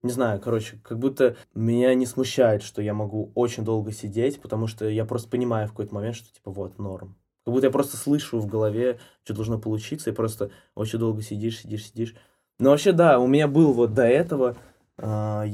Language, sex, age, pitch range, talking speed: Russian, male, 20-39, 105-125 Hz, 205 wpm